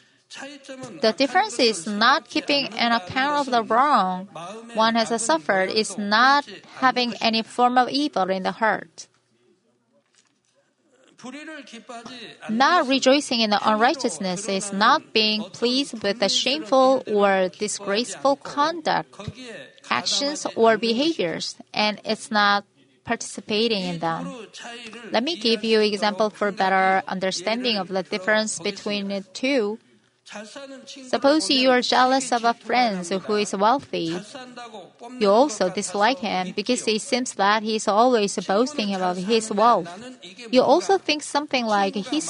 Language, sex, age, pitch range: Korean, female, 30-49, 205-270 Hz